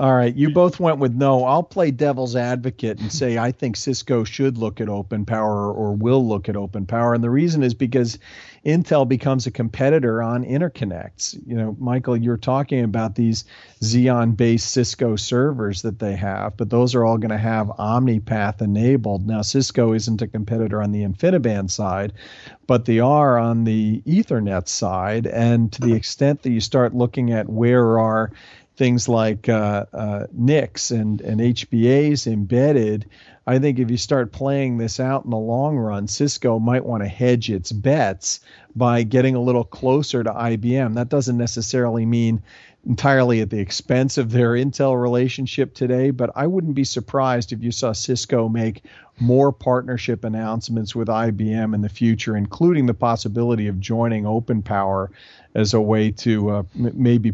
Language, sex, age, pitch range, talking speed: English, male, 40-59, 110-130 Hz, 175 wpm